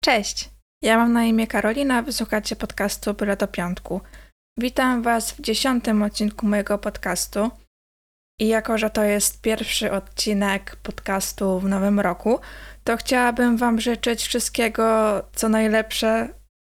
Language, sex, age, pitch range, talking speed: Polish, female, 20-39, 205-225 Hz, 130 wpm